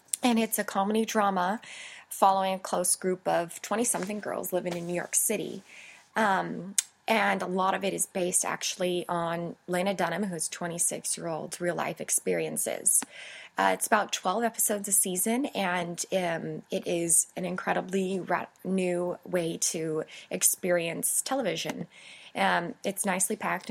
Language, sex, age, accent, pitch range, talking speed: English, female, 20-39, American, 170-190 Hz, 135 wpm